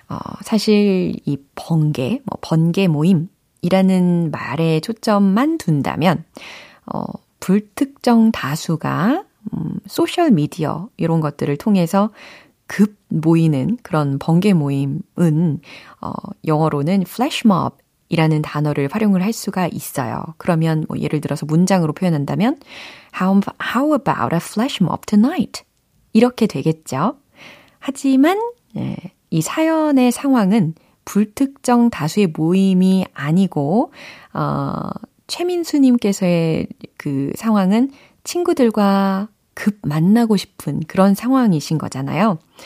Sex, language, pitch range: female, Korean, 160-230 Hz